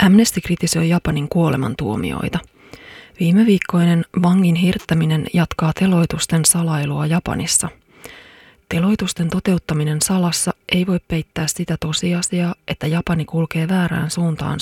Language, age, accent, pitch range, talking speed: Finnish, 30-49, native, 155-175 Hz, 105 wpm